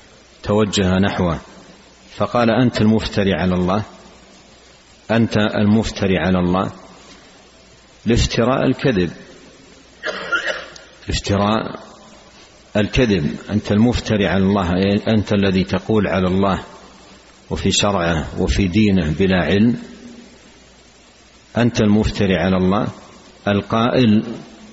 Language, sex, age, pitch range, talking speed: Arabic, male, 50-69, 95-110 Hz, 85 wpm